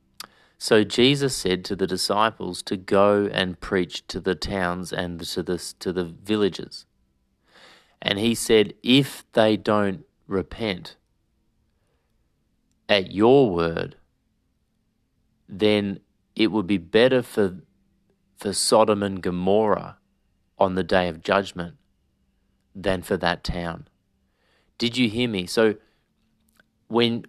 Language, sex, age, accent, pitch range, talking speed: English, male, 30-49, Australian, 90-115 Hz, 120 wpm